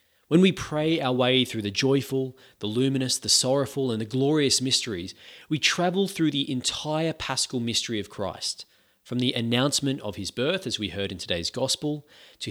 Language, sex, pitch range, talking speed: English, male, 105-140 Hz, 180 wpm